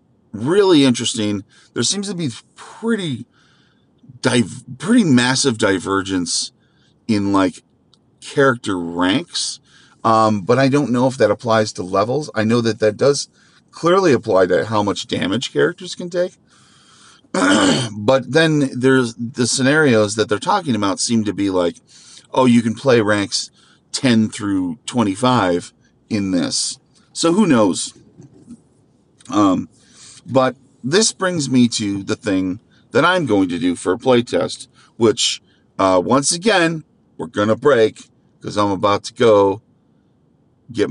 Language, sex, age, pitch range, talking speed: English, male, 40-59, 105-140 Hz, 140 wpm